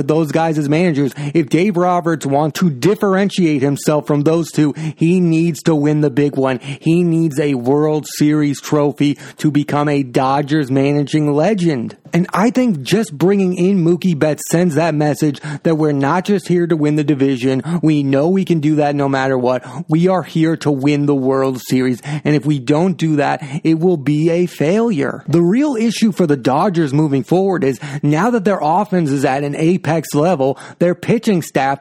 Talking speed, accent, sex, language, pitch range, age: 190 wpm, American, male, English, 145-170 Hz, 30-49